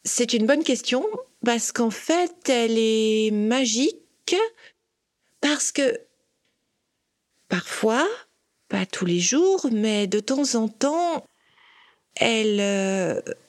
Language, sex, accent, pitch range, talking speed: French, female, French, 205-275 Hz, 105 wpm